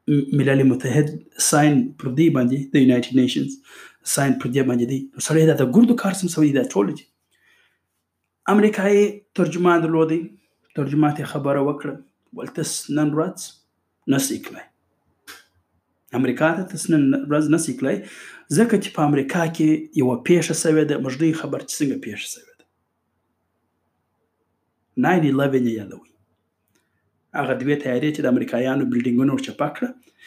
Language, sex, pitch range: Urdu, male, 120-160 Hz